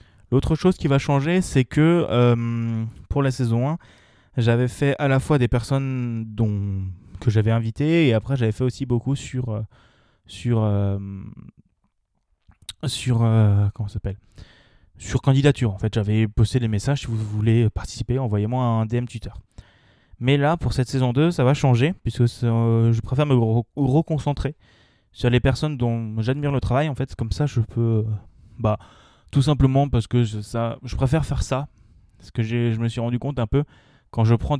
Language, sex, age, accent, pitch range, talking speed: French, male, 20-39, French, 110-135 Hz, 180 wpm